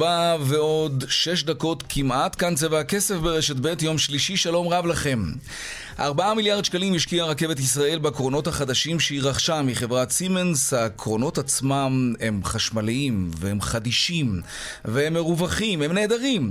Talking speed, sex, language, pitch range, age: 130 wpm, male, Hebrew, 120-165 Hz, 30-49